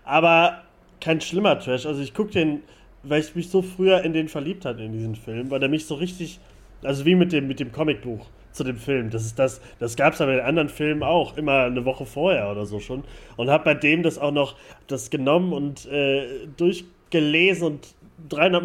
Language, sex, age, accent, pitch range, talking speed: German, male, 30-49, German, 125-165 Hz, 220 wpm